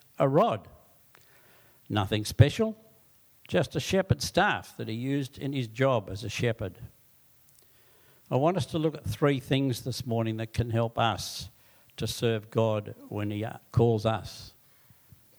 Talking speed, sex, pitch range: 150 wpm, male, 110-140 Hz